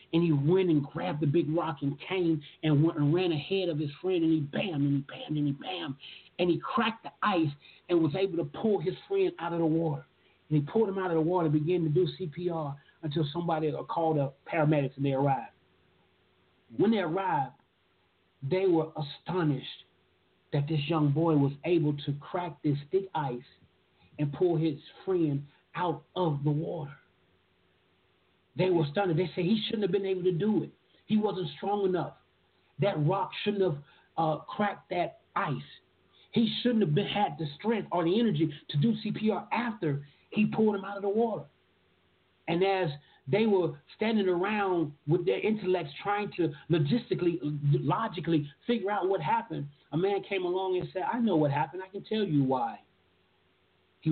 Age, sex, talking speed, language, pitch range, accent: 40-59, male, 185 wpm, English, 140-185 Hz, American